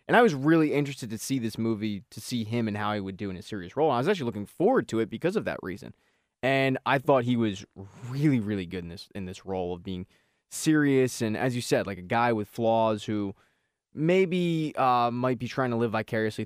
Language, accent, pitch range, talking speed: English, American, 100-130 Hz, 245 wpm